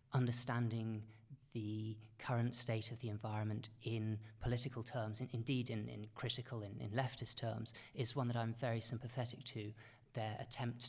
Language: English